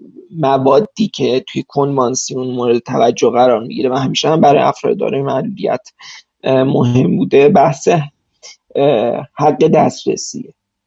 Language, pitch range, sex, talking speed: Persian, 135-200 Hz, male, 120 wpm